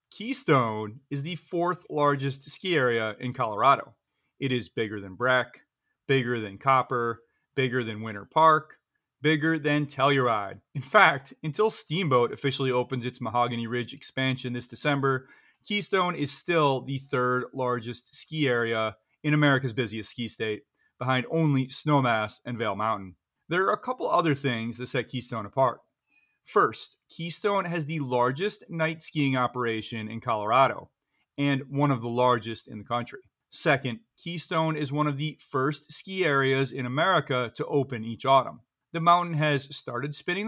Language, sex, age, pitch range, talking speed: English, male, 30-49, 120-145 Hz, 155 wpm